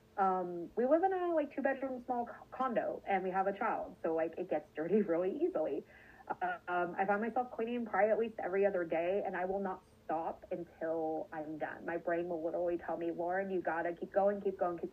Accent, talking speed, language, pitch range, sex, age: American, 225 wpm, English, 175-220 Hz, female, 30-49